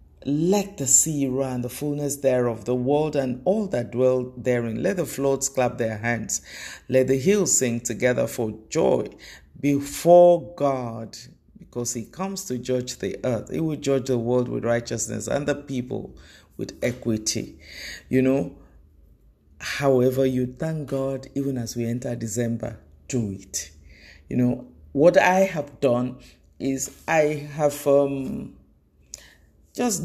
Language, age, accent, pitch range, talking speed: English, 50-69, Nigerian, 115-145 Hz, 145 wpm